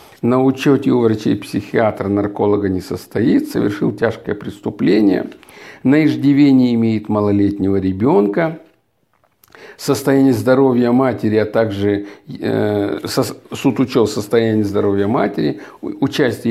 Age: 50-69